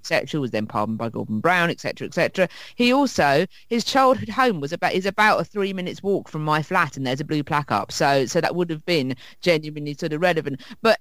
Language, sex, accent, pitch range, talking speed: English, female, British, 160-240 Hz, 230 wpm